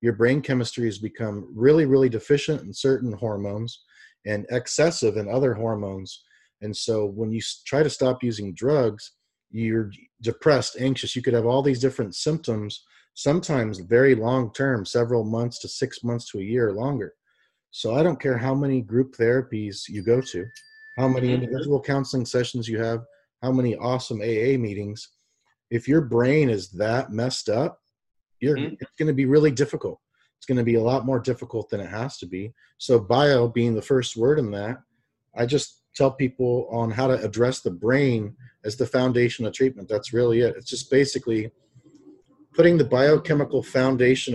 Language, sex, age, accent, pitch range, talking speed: English, male, 30-49, American, 115-135 Hz, 175 wpm